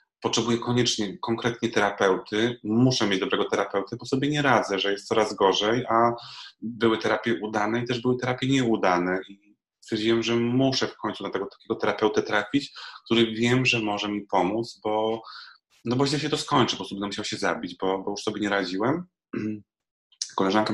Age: 30-49